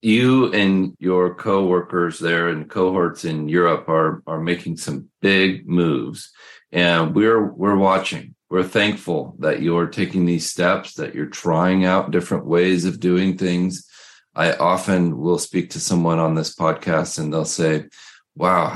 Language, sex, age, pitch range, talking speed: English, male, 40-59, 80-95 Hz, 155 wpm